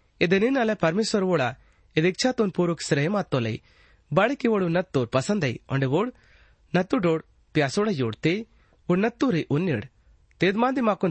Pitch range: 135-200 Hz